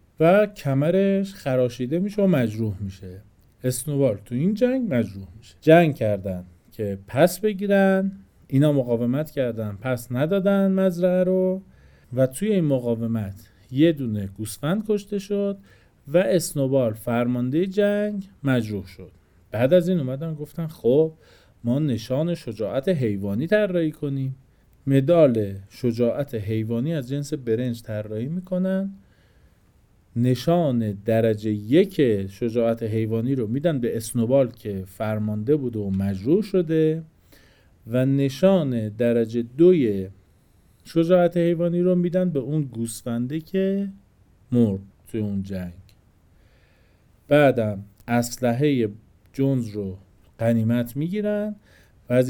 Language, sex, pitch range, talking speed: Persian, male, 110-165 Hz, 115 wpm